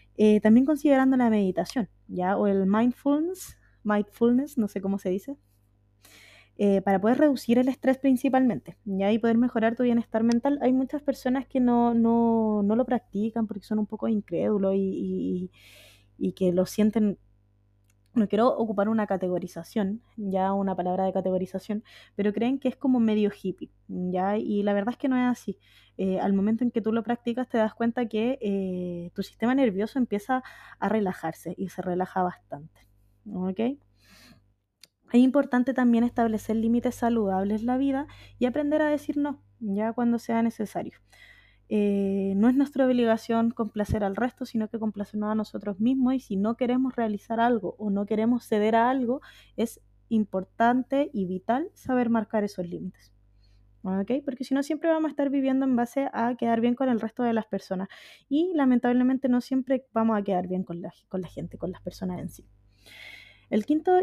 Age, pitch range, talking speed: 20-39, 190-250 Hz, 175 wpm